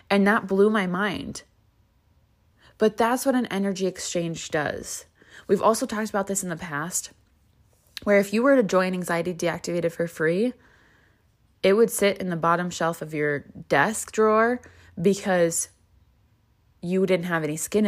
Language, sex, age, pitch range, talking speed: English, female, 20-39, 145-195 Hz, 160 wpm